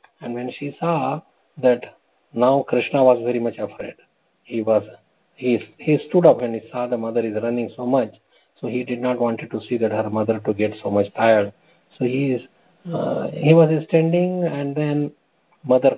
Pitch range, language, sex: 110-125 Hz, English, male